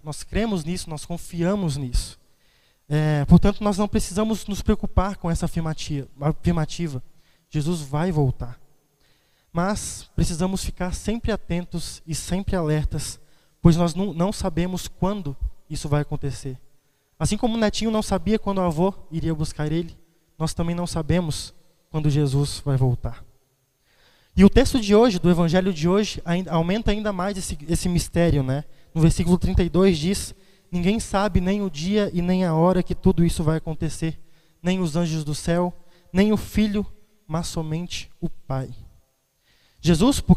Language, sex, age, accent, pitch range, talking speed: Portuguese, male, 20-39, Brazilian, 155-190 Hz, 155 wpm